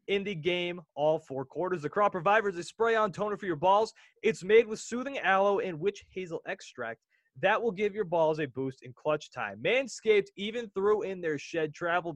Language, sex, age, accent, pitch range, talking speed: English, male, 20-39, American, 155-220 Hz, 205 wpm